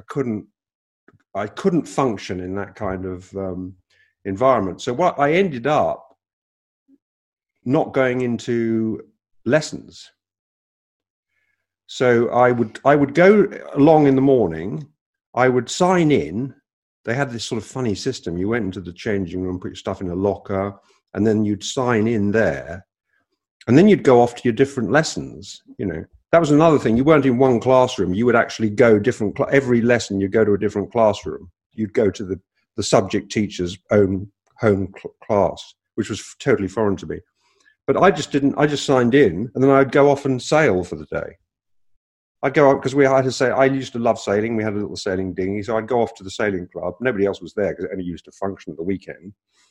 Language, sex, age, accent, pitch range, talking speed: English, male, 50-69, British, 95-130 Hz, 205 wpm